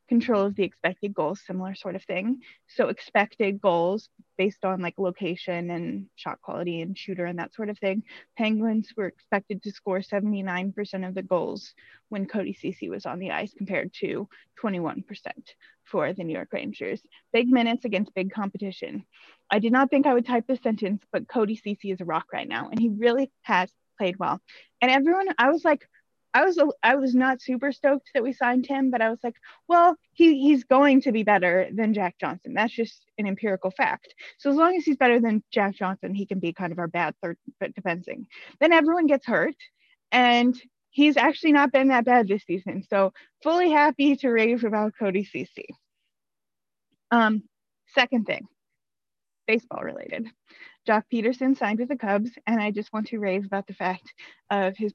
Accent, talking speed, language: American, 190 wpm, English